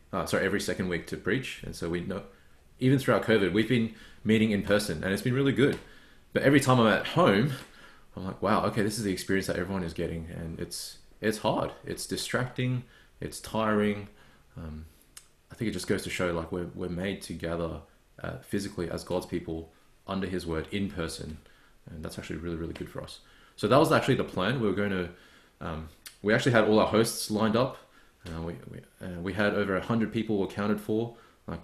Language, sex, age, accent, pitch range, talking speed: English, male, 20-39, Australian, 85-110 Hz, 215 wpm